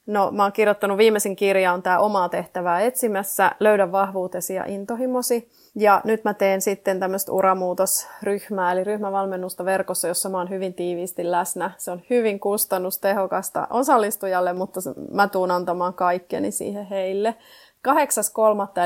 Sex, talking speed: female, 140 wpm